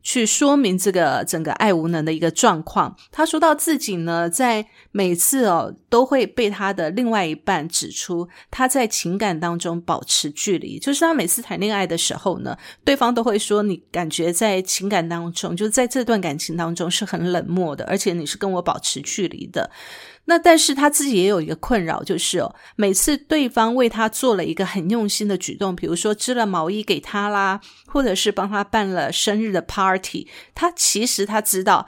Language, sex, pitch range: Chinese, female, 180-240 Hz